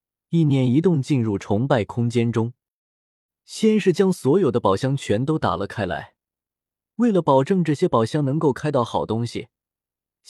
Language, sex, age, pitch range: Chinese, male, 20-39, 110-170 Hz